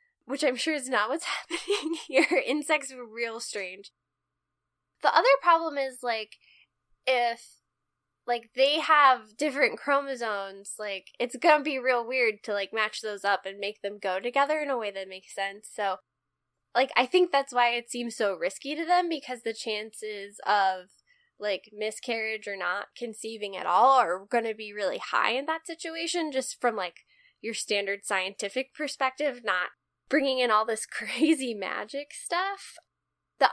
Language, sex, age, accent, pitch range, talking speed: English, female, 10-29, American, 210-285 Hz, 165 wpm